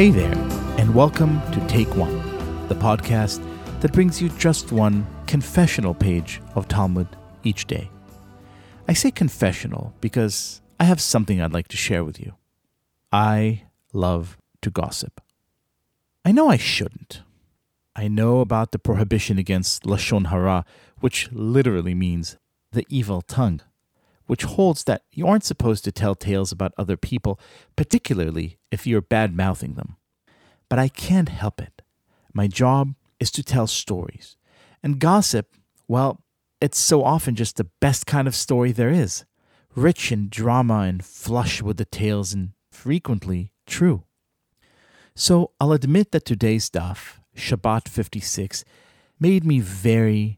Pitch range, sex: 100-130 Hz, male